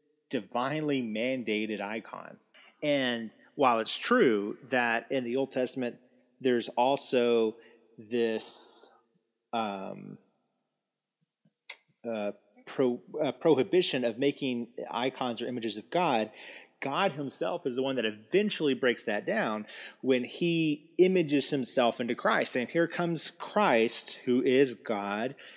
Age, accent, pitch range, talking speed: 30-49, American, 115-140 Hz, 115 wpm